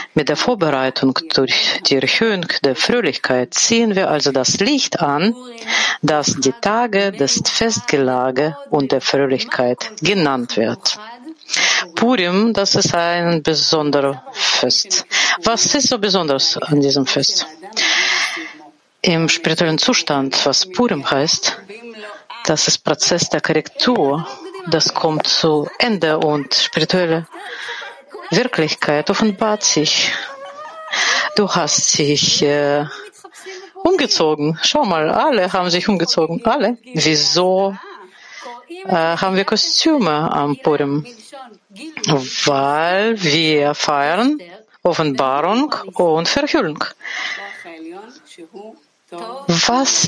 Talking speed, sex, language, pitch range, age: 100 wpm, female, German, 150-230 Hz, 40-59